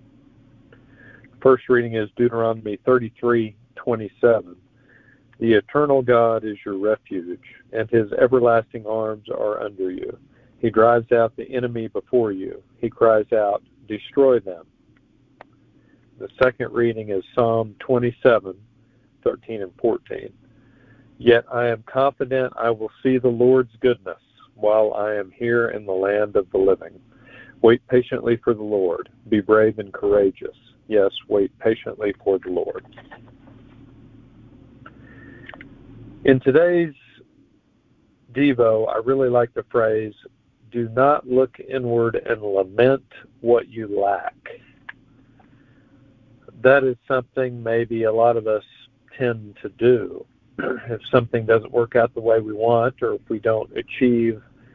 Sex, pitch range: male, 115-130 Hz